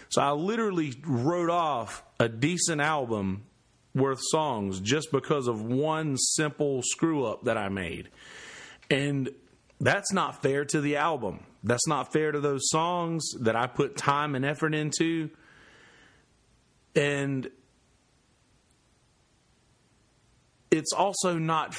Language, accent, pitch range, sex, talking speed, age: English, American, 125-155 Hz, male, 120 wpm, 30-49